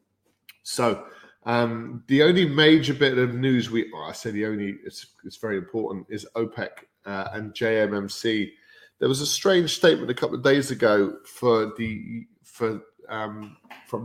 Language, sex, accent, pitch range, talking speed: English, male, British, 105-130 Hz, 160 wpm